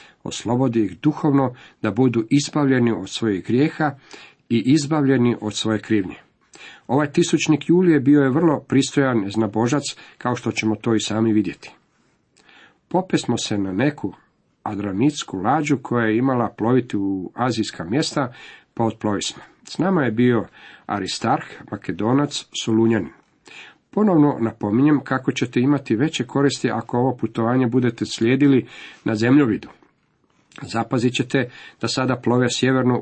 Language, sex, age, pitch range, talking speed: Croatian, male, 50-69, 110-135 Hz, 130 wpm